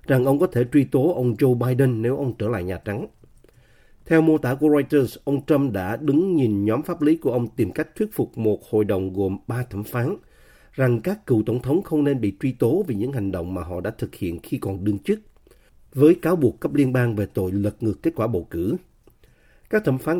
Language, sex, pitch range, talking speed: Vietnamese, male, 105-140 Hz, 240 wpm